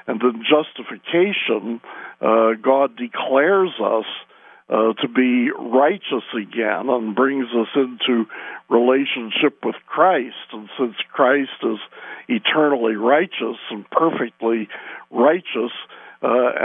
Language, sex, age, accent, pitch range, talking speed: English, male, 60-79, American, 115-135 Hz, 105 wpm